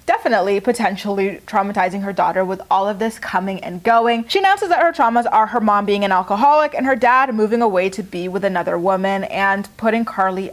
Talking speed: 205 wpm